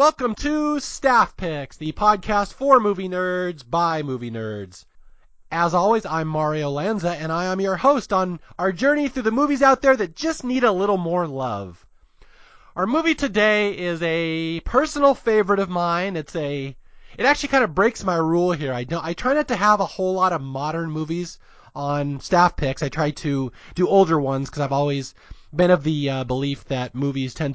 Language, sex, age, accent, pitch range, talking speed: English, male, 30-49, American, 150-210 Hz, 195 wpm